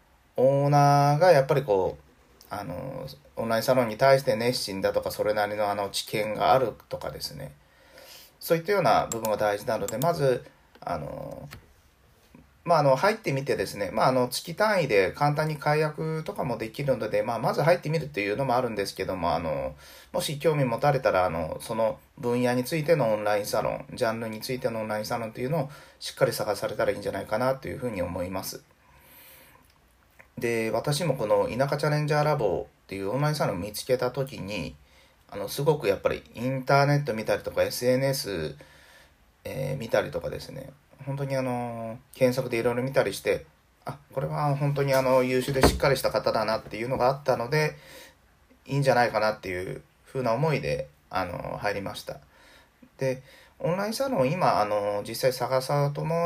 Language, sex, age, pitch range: Japanese, male, 30-49, 115-155 Hz